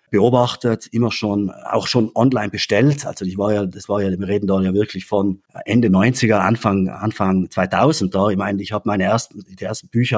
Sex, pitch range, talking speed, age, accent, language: male, 100-125 Hz, 205 wpm, 30-49, German, German